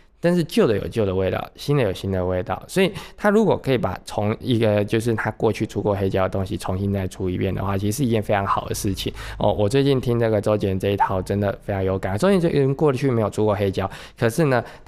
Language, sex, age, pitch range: Chinese, male, 20-39, 95-115 Hz